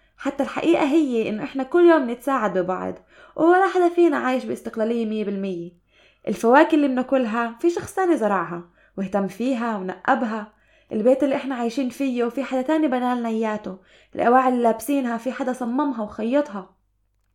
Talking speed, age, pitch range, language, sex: 150 wpm, 20-39, 205-275 Hz, Arabic, female